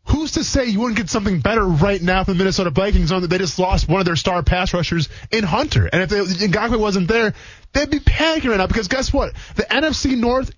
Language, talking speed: English, 250 wpm